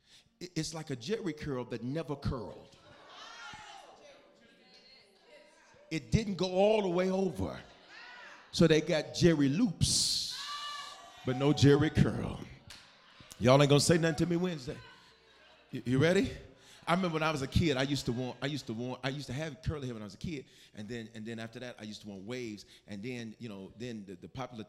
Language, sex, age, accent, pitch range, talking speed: English, male, 40-59, American, 110-160 Hz, 195 wpm